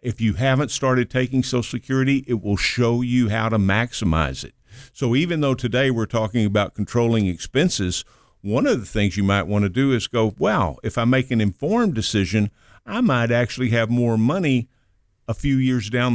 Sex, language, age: male, English, 50-69